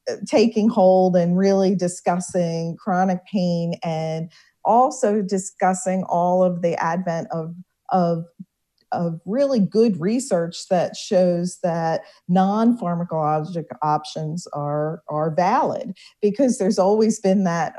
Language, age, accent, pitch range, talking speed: English, 40-59, American, 170-200 Hz, 110 wpm